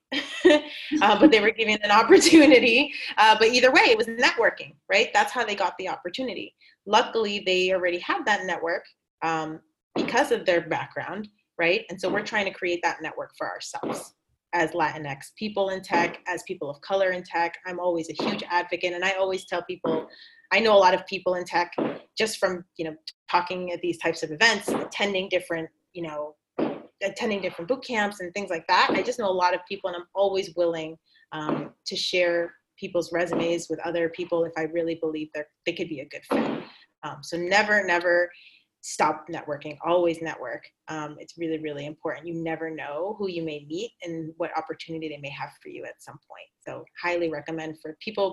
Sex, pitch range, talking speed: female, 165-205 Hz, 200 wpm